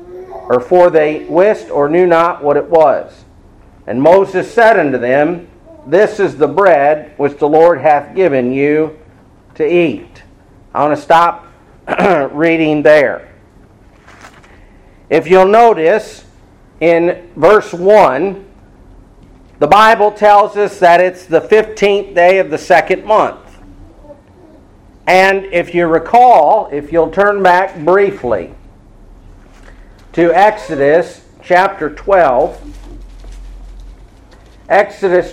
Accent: American